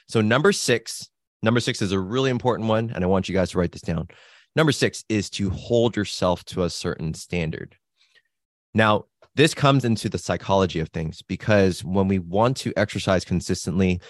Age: 20-39